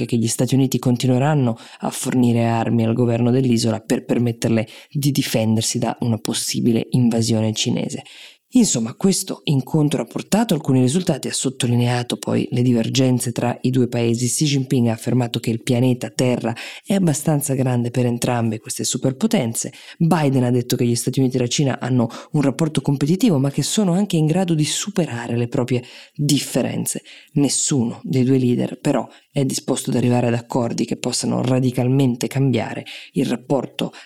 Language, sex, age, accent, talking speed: Italian, female, 20-39, native, 165 wpm